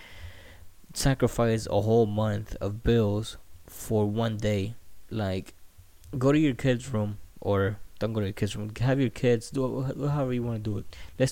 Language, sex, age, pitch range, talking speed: English, male, 20-39, 100-120 Hz, 175 wpm